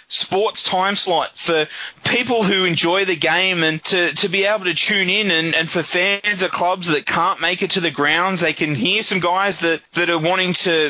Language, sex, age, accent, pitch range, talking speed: English, male, 20-39, Australian, 170-230 Hz, 220 wpm